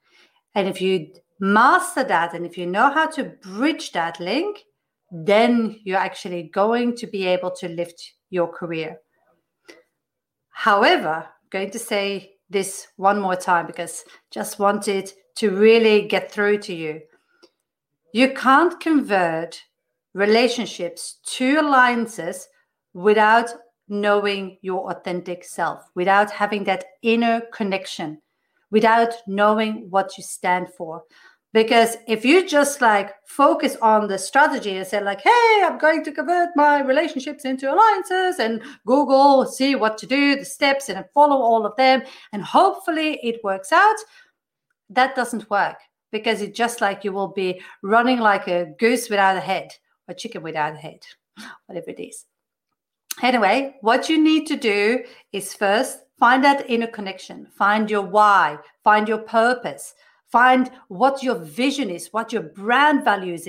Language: English